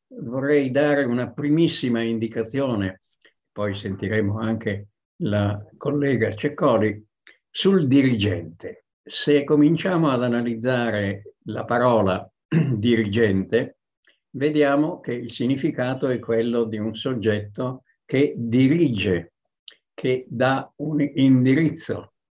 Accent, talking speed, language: native, 95 wpm, Italian